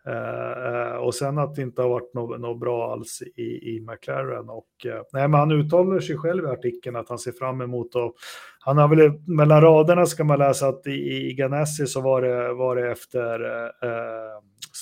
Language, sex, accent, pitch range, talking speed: Swedish, male, native, 120-145 Hz, 195 wpm